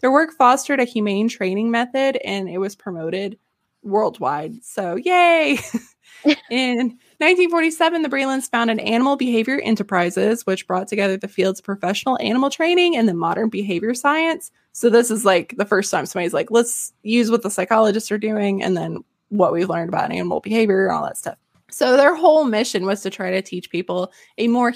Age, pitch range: 20-39, 200-280 Hz